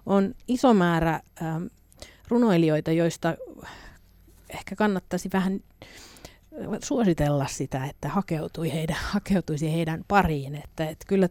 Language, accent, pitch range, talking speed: Finnish, native, 145-180 Hz, 80 wpm